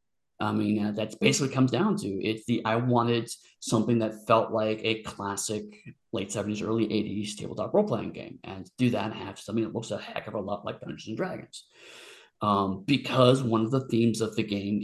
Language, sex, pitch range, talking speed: English, male, 110-135 Hz, 200 wpm